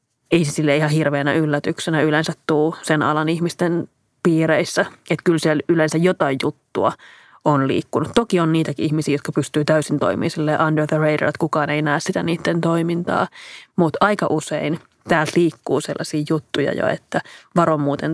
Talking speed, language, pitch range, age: 160 wpm, Finnish, 150-170 Hz, 30-49